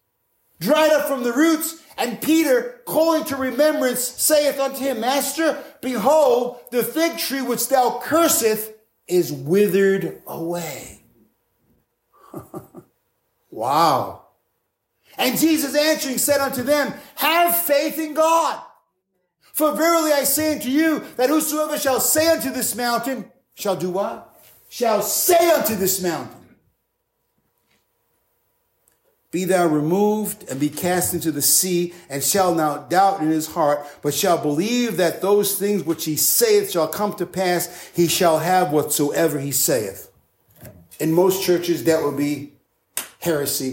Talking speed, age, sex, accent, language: 135 wpm, 50-69, male, American, English